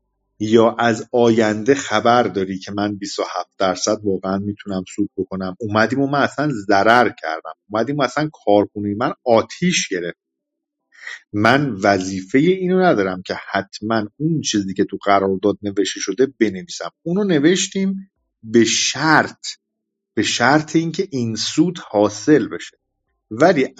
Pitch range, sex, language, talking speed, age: 105-145 Hz, male, Persian, 125 wpm, 50-69